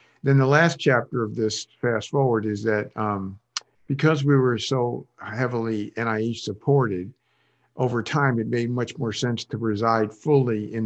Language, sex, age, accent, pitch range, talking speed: English, male, 50-69, American, 105-125 Hz, 160 wpm